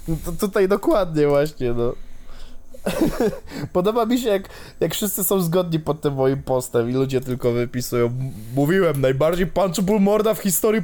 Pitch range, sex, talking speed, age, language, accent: 140-205 Hz, male, 155 wpm, 20-39, Polish, native